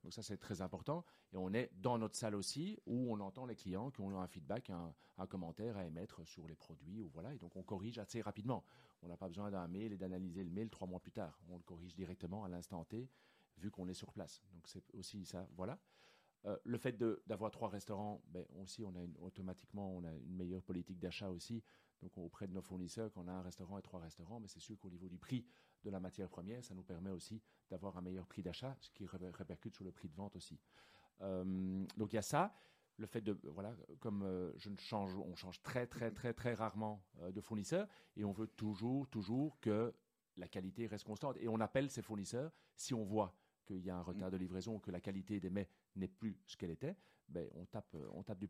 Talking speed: 245 wpm